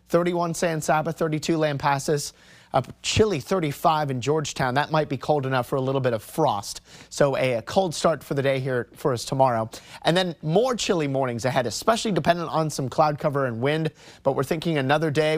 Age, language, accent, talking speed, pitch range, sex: 30-49, English, American, 205 wpm, 135-180 Hz, male